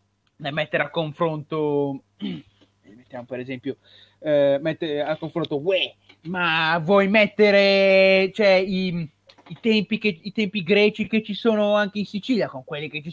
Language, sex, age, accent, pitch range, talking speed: Italian, male, 30-49, native, 140-210 Hz, 145 wpm